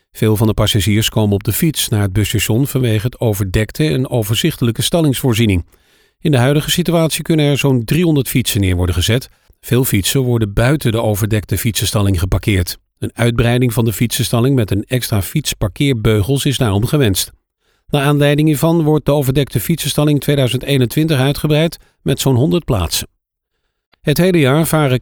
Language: Dutch